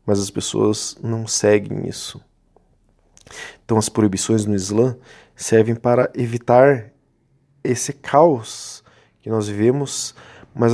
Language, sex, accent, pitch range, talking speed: Portuguese, male, Brazilian, 110-130 Hz, 110 wpm